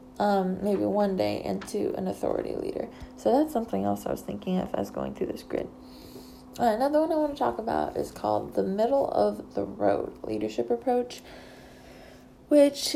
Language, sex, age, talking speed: English, female, 20-39, 180 wpm